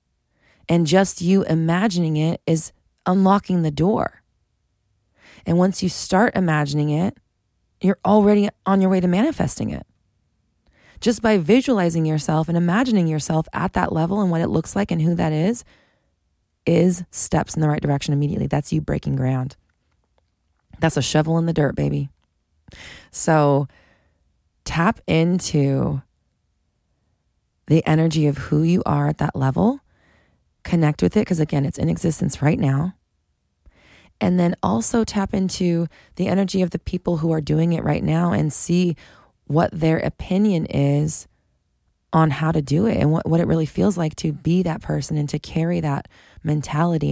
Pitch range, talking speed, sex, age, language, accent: 140-180 Hz, 160 wpm, female, 20-39, English, American